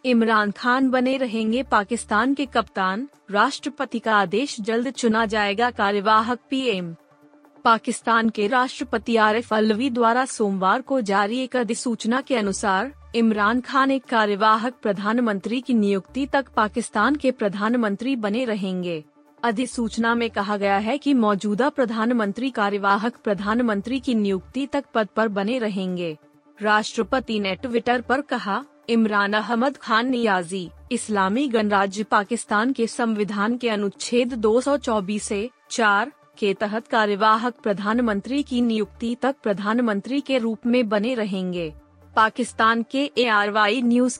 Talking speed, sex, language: 130 wpm, female, Hindi